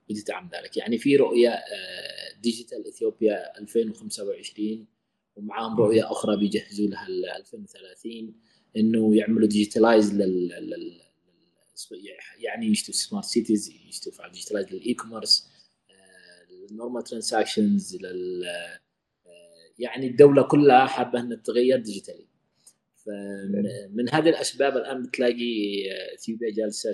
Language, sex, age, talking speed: Arabic, male, 20-39, 100 wpm